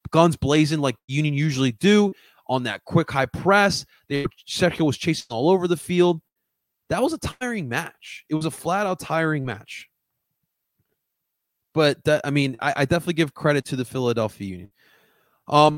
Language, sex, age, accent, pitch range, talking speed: English, male, 20-39, American, 125-175 Hz, 165 wpm